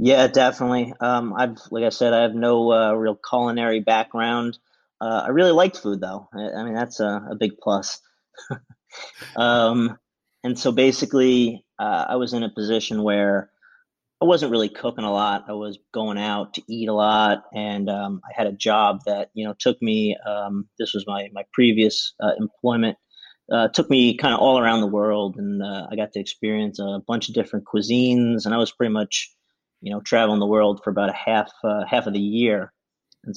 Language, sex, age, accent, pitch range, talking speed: English, male, 30-49, American, 105-120 Hz, 200 wpm